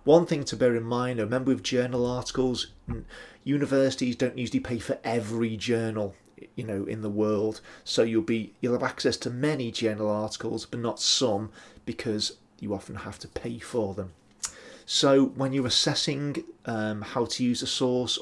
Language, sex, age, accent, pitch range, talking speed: English, male, 30-49, British, 110-130 Hz, 175 wpm